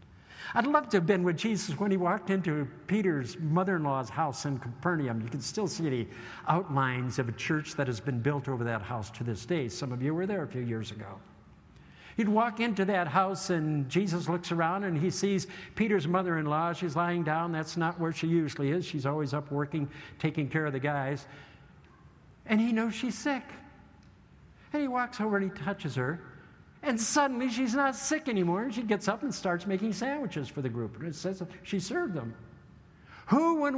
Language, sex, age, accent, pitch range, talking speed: English, male, 60-79, American, 145-200 Hz, 205 wpm